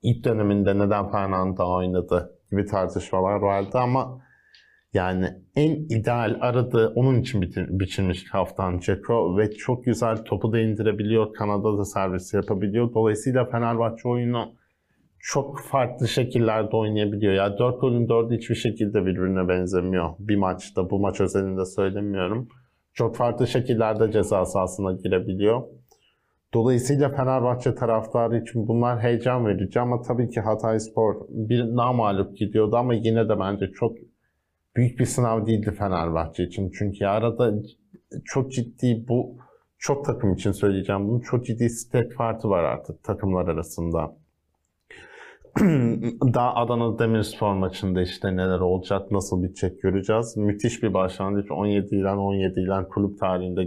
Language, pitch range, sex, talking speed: Turkish, 95-120 Hz, male, 135 wpm